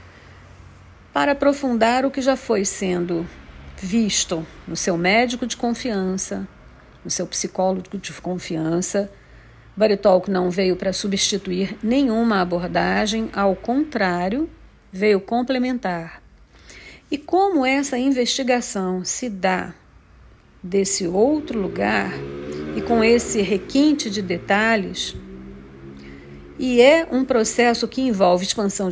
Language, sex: Portuguese, female